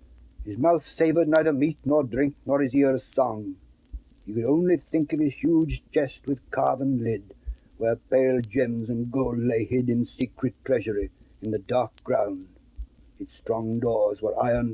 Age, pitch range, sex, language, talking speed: 60-79, 90-150 Hz, male, English, 170 wpm